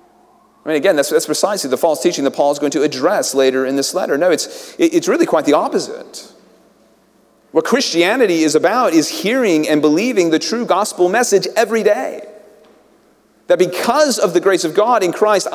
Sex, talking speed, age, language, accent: male, 190 wpm, 40-59, English, American